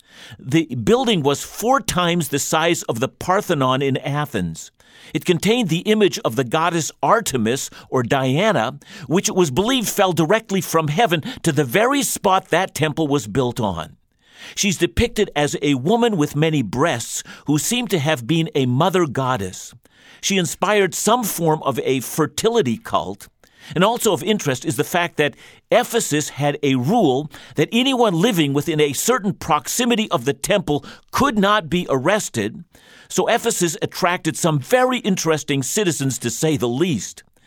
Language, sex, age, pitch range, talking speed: English, male, 50-69, 140-195 Hz, 160 wpm